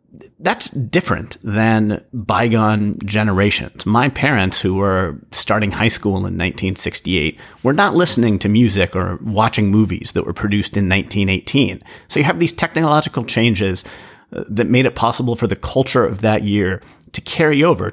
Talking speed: 155 wpm